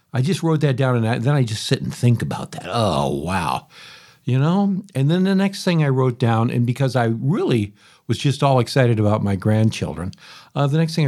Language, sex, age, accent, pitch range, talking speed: English, male, 60-79, American, 120-165 Hz, 220 wpm